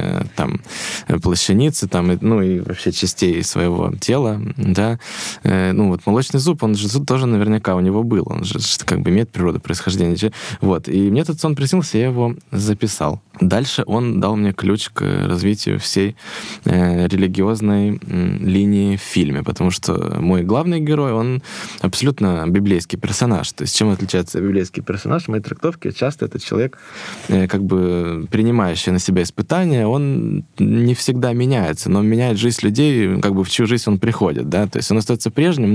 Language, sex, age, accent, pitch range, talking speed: Russian, male, 20-39, native, 95-120 Hz, 165 wpm